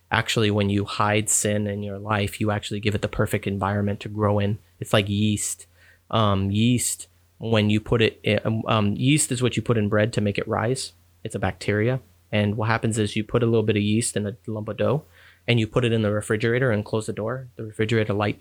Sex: male